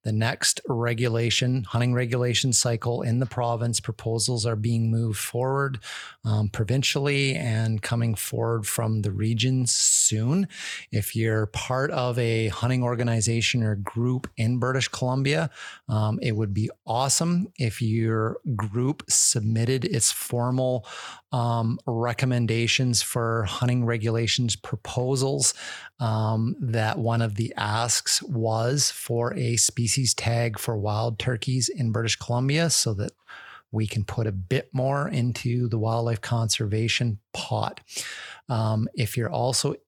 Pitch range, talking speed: 115-130 Hz, 130 wpm